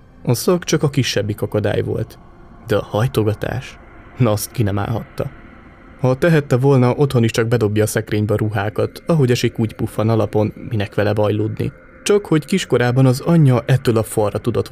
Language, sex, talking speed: Hungarian, male, 175 wpm